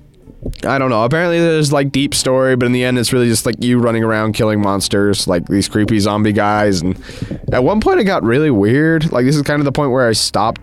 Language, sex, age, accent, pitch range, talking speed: English, male, 20-39, American, 105-135 Hz, 250 wpm